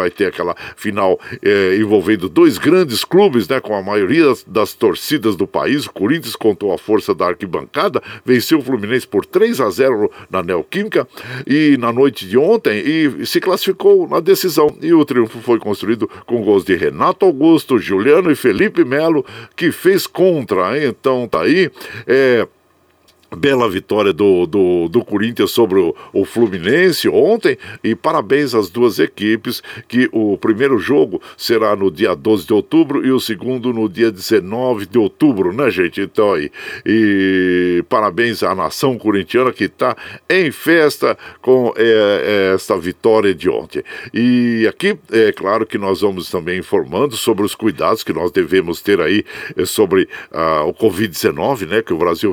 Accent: Brazilian